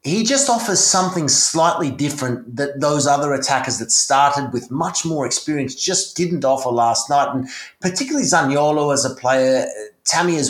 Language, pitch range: English, 125-170 Hz